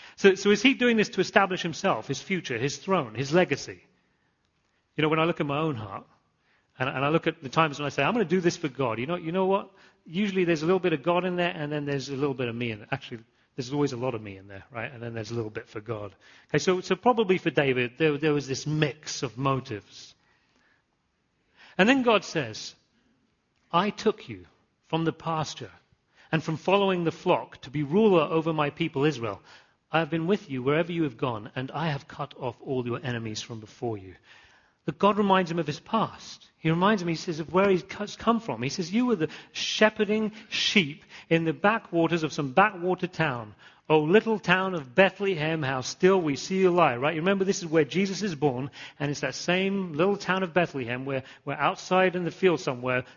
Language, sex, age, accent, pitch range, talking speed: English, male, 40-59, British, 135-185 Hz, 230 wpm